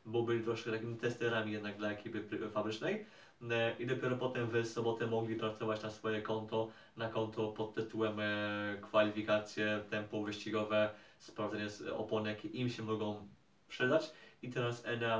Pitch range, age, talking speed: 110-120 Hz, 20-39, 140 wpm